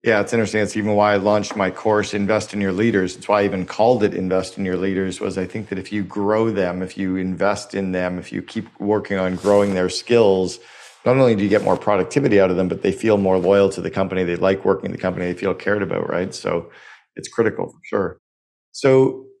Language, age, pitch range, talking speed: English, 40-59, 95-110 Hz, 245 wpm